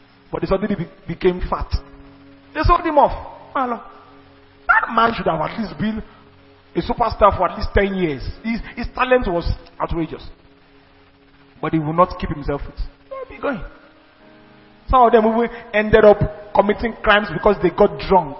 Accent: Nigerian